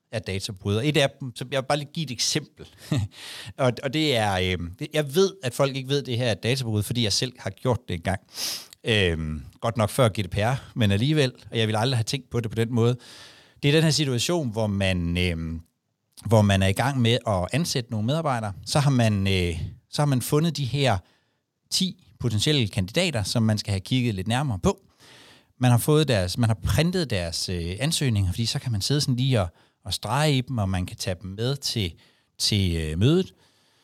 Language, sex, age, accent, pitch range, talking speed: Danish, male, 60-79, native, 105-140 Hz, 220 wpm